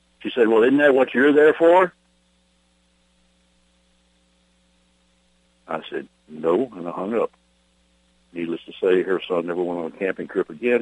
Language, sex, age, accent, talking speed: English, male, 60-79, American, 155 wpm